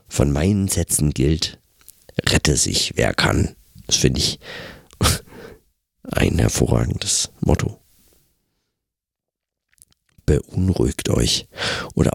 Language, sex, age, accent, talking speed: German, male, 50-69, German, 85 wpm